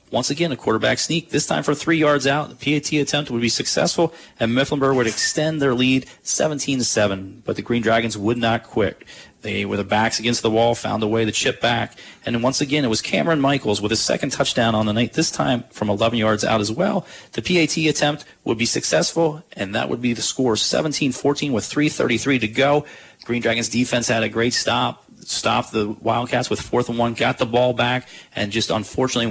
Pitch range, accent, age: 105-135 Hz, American, 30-49